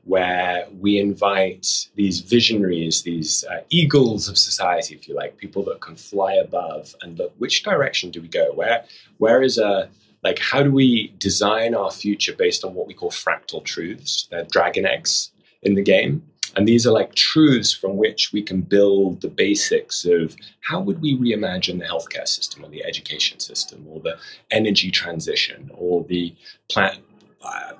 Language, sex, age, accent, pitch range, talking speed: English, male, 20-39, British, 95-155 Hz, 175 wpm